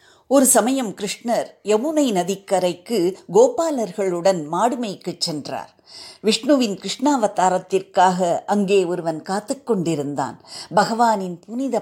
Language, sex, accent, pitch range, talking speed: Tamil, female, native, 180-235 Hz, 75 wpm